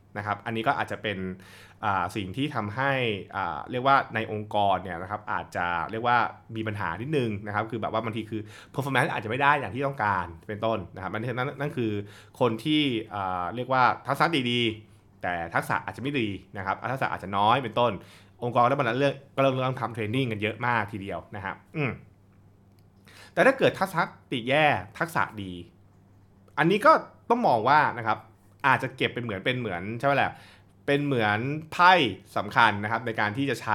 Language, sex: Thai, male